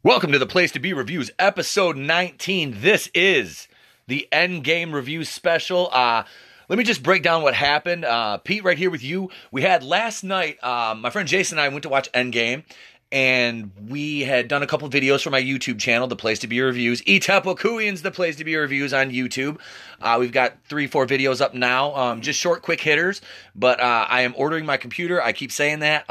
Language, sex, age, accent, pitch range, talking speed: English, male, 30-49, American, 125-155 Hz, 215 wpm